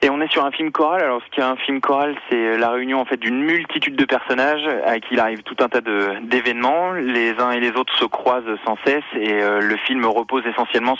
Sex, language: male, French